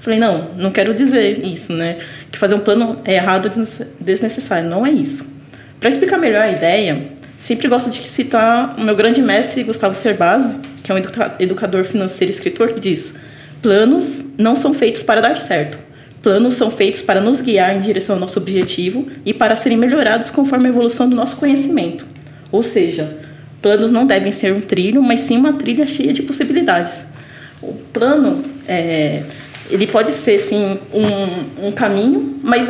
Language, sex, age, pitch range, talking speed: Portuguese, female, 20-39, 185-245 Hz, 175 wpm